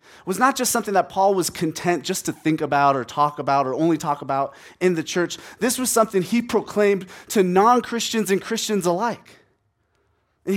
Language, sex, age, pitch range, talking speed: English, male, 30-49, 170-235 Hz, 185 wpm